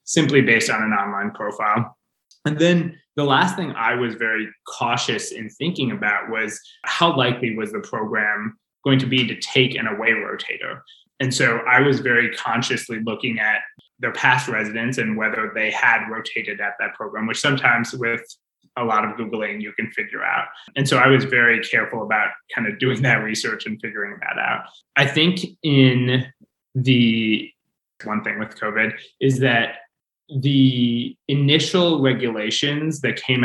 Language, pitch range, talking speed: English, 110-135 Hz, 165 wpm